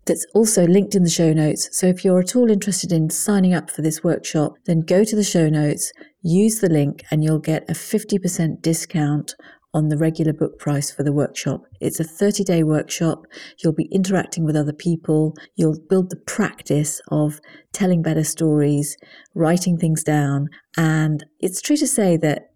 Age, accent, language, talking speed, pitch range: 40-59, British, English, 185 wpm, 150-185 Hz